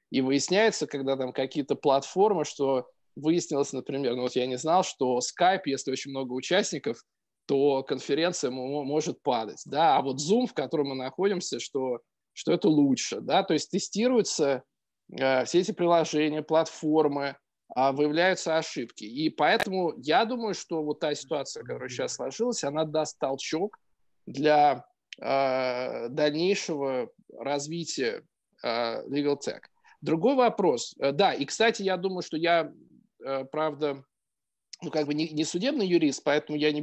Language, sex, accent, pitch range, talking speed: Russian, male, native, 140-175 Hz, 145 wpm